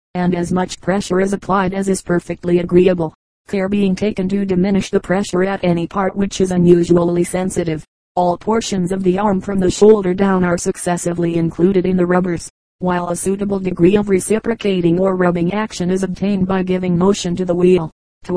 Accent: American